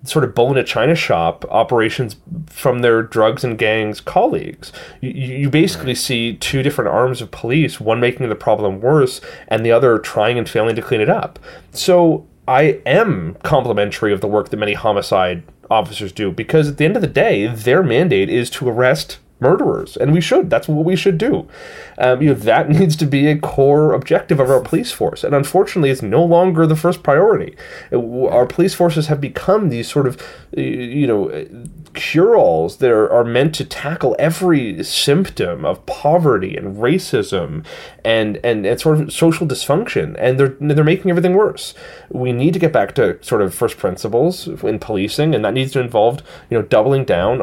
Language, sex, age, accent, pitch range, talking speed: English, male, 30-49, American, 115-165 Hz, 190 wpm